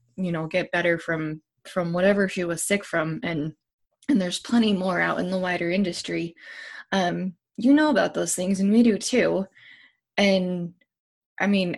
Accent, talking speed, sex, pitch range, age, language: American, 175 wpm, female, 175-220 Hz, 20-39, English